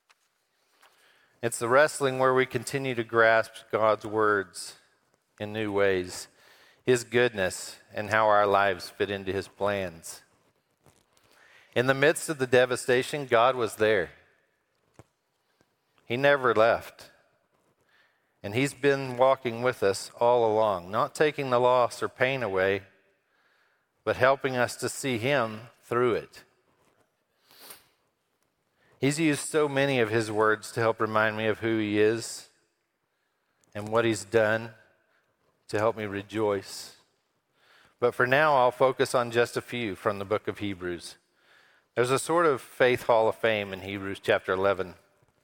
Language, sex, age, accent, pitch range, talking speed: English, male, 50-69, American, 105-125 Hz, 140 wpm